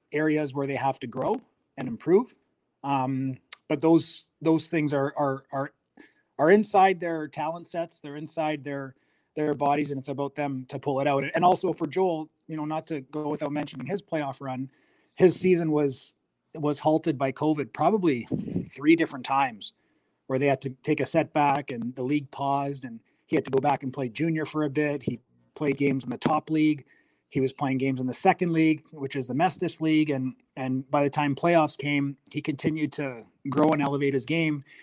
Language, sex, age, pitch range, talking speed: English, male, 30-49, 135-155 Hz, 200 wpm